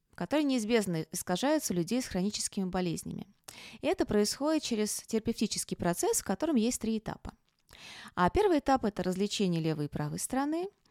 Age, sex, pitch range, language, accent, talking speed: 20-39, female, 175-240 Hz, Russian, native, 160 wpm